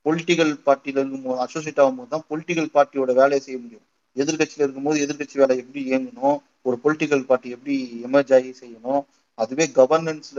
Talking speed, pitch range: 145 wpm, 130-155 Hz